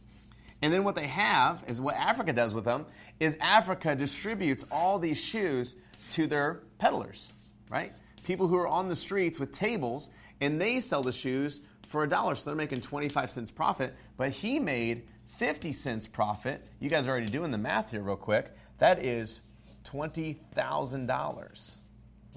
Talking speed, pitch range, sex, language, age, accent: 165 wpm, 105-145 Hz, male, English, 30-49, American